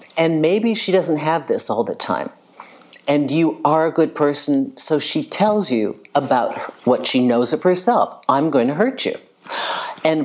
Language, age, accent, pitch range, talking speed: English, 50-69, American, 130-205 Hz, 180 wpm